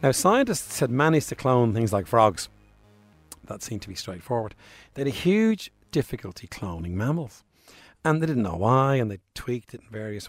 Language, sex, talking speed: English, male, 185 wpm